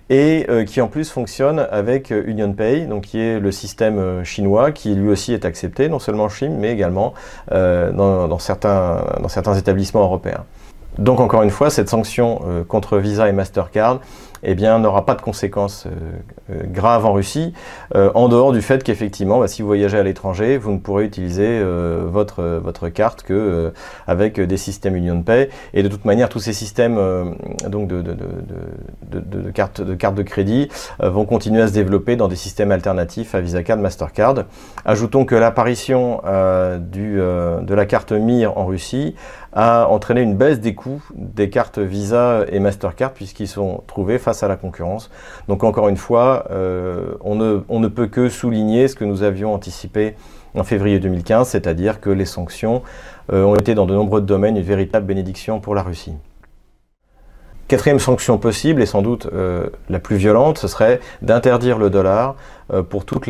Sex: male